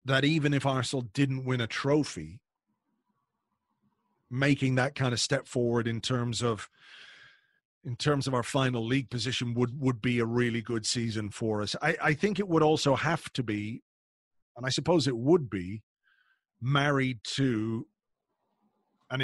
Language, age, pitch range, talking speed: English, 40-59, 115-140 Hz, 160 wpm